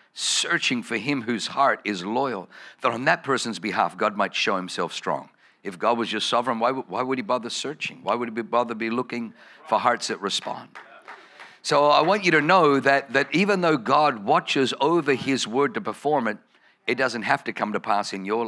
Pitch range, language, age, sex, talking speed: 115-145 Hz, English, 50-69, male, 210 wpm